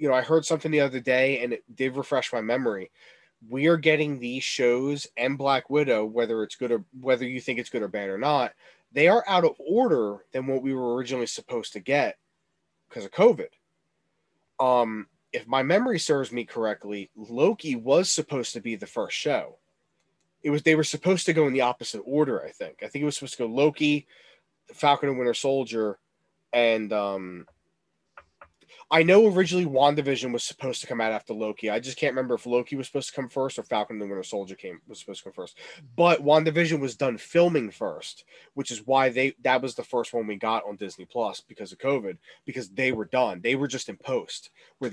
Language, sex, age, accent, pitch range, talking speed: English, male, 30-49, American, 120-150 Hz, 210 wpm